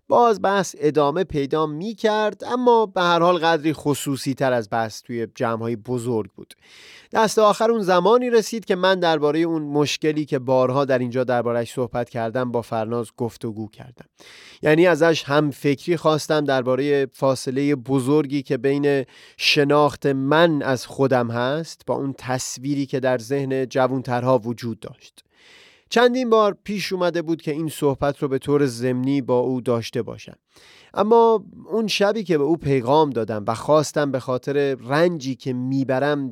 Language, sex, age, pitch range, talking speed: Persian, male, 30-49, 130-170 Hz, 155 wpm